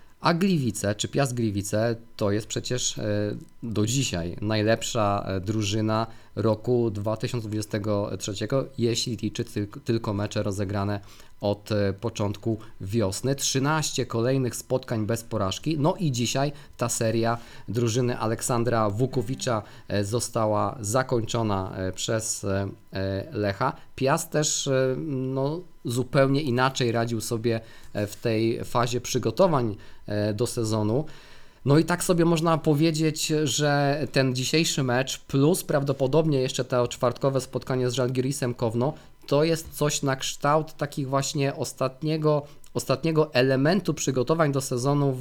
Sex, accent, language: male, native, Polish